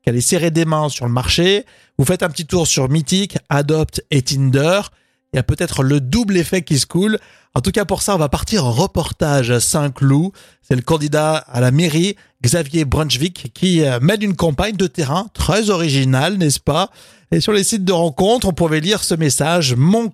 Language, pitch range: French, 135-185 Hz